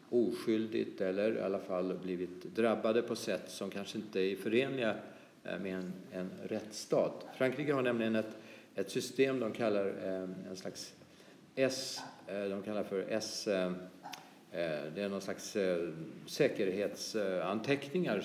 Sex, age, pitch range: male, 50-69, 95-125 Hz